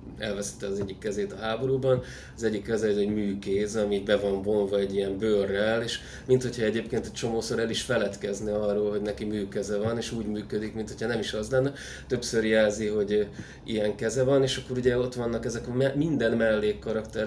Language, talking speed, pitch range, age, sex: Hungarian, 200 wpm, 105-115 Hz, 20-39, male